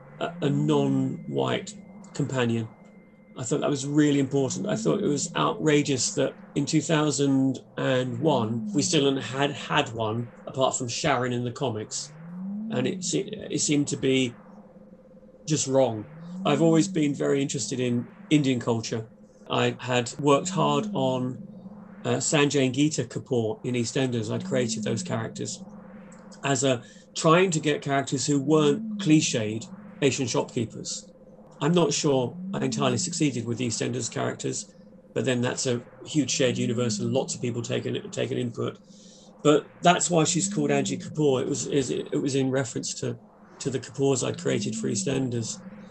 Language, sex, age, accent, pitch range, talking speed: English, male, 30-49, British, 125-165 Hz, 150 wpm